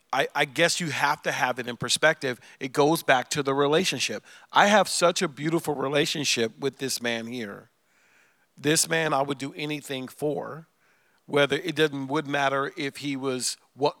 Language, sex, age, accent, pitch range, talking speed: English, male, 40-59, American, 130-170 Hz, 180 wpm